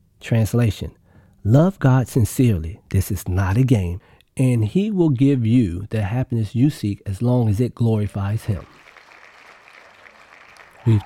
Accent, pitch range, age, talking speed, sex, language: American, 95-120 Hz, 40-59, 135 wpm, male, English